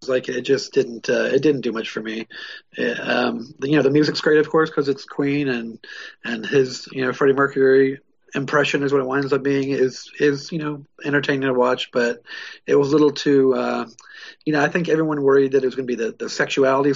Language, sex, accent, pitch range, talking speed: English, male, American, 130-150 Hz, 235 wpm